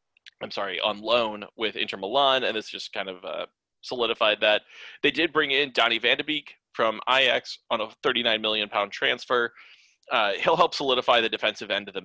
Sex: male